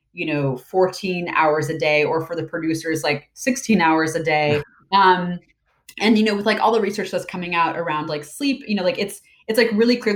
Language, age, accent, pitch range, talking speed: English, 20-39, American, 150-190 Hz, 225 wpm